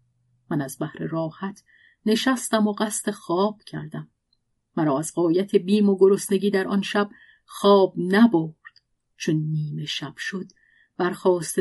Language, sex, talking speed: Persian, female, 130 wpm